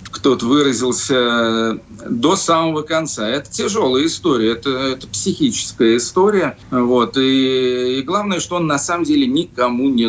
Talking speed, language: 130 wpm, Russian